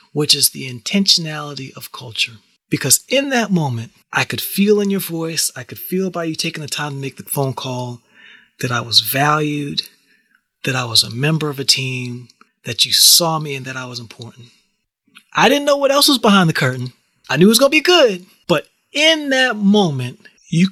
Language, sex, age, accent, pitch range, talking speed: English, male, 30-49, American, 130-175 Hz, 210 wpm